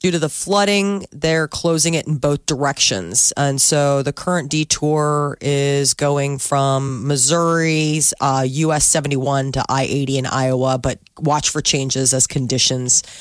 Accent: American